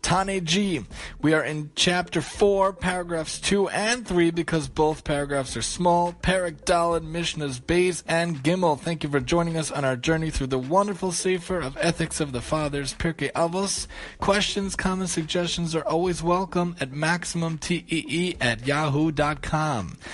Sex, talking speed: male, 145 wpm